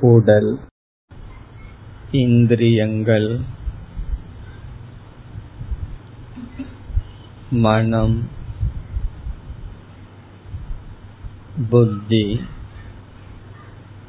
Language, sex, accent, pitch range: Tamil, male, native, 100-115 Hz